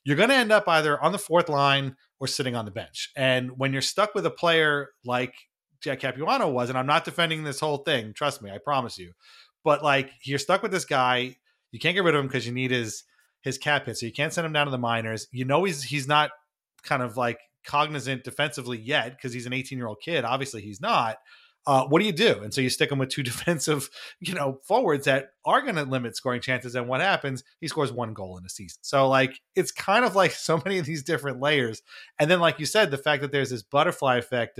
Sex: male